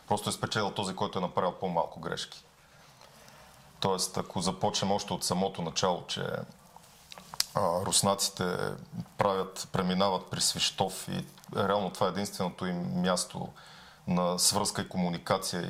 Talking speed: 125 wpm